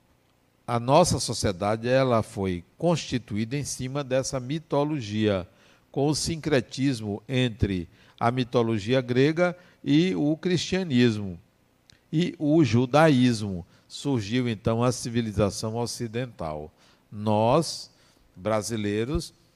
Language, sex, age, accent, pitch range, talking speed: Portuguese, male, 60-79, Brazilian, 105-140 Hz, 90 wpm